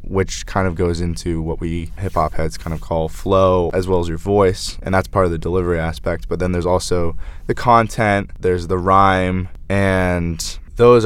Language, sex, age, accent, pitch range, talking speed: English, male, 20-39, American, 80-95 Hz, 195 wpm